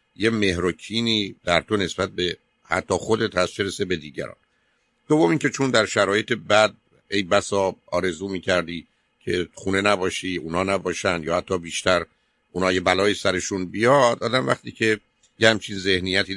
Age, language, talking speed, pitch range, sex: 50-69, Persian, 145 wpm, 90-105 Hz, male